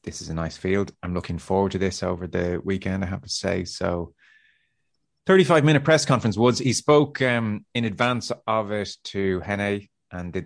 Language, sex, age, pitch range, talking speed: English, male, 30-49, 85-110 Hz, 190 wpm